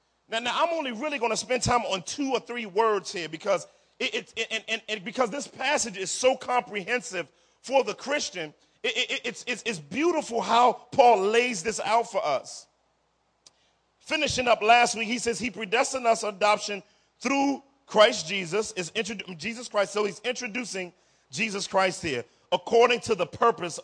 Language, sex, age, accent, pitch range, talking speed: English, male, 40-59, American, 205-250 Hz, 180 wpm